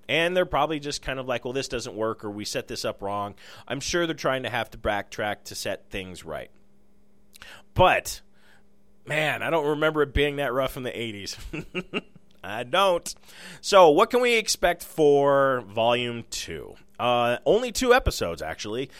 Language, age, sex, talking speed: English, 30-49, male, 175 wpm